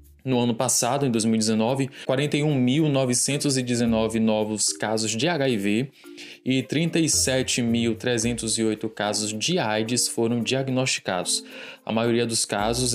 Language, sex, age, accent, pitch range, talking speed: Portuguese, male, 20-39, Brazilian, 115-135 Hz, 95 wpm